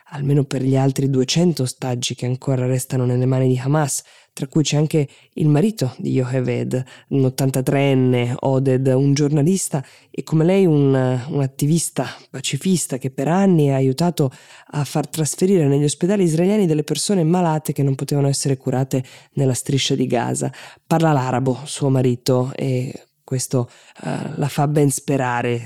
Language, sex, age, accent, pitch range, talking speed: Italian, female, 20-39, native, 125-155 Hz, 155 wpm